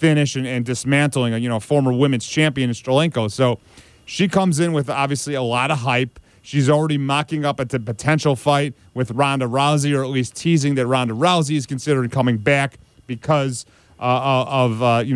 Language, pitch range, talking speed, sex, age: English, 125-155 Hz, 190 wpm, male, 40-59